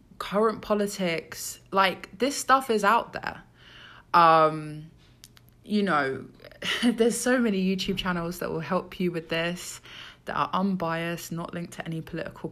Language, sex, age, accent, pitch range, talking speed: English, female, 20-39, British, 145-200 Hz, 145 wpm